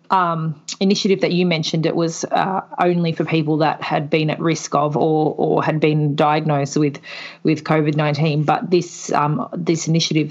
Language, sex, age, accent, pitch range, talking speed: English, female, 30-49, Australian, 150-185 Hz, 180 wpm